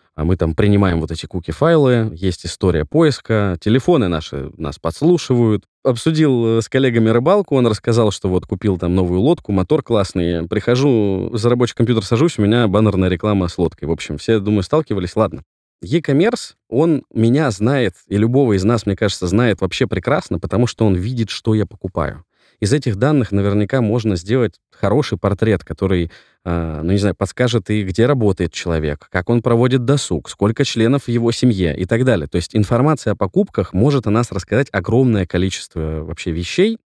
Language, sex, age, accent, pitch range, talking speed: Russian, male, 20-39, native, 90-120 Hz, 175 wpm